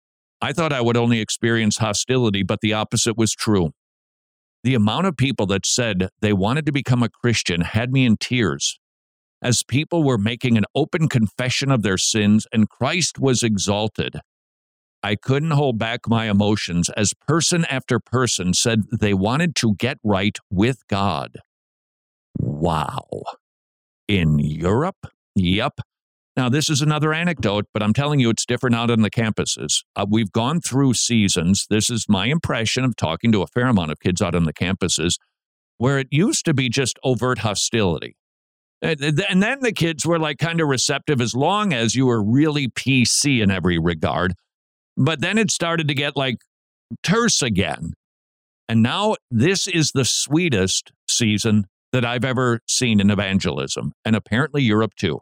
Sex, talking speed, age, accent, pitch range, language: male, 165 wpm, 50-69, American, 105-135 Hz, English